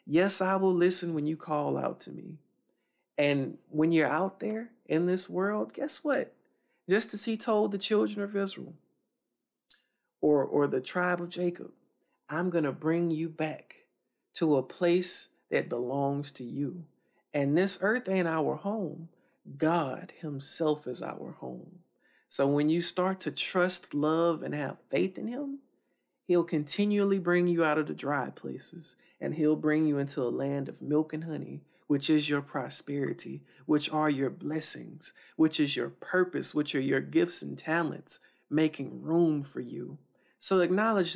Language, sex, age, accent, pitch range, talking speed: English, male, 50-69, American, 150-190 Hz, 165 wpm